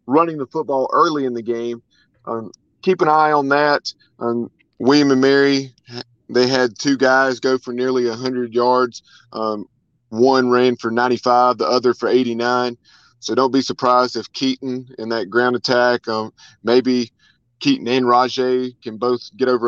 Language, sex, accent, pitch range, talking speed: English, male, American, 120-130 Hz, 165 wpm